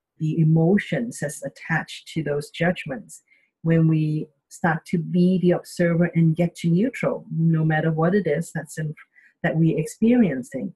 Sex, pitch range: female, 155-190 Hz